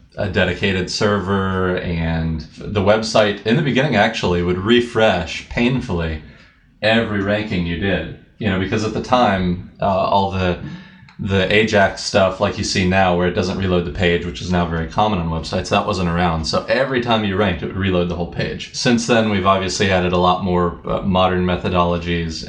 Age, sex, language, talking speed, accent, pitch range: 30-49, male, English, 190 wpm, American, 90-105 Hz